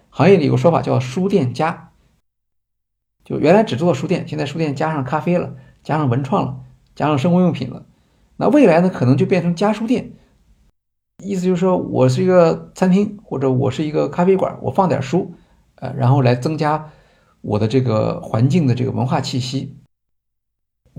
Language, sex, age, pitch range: Chinese, male, 50-69, 125-175 Hz